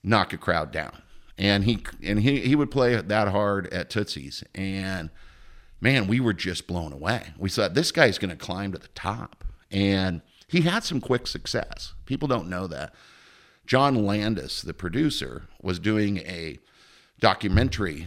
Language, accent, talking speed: English, American, 165 wpm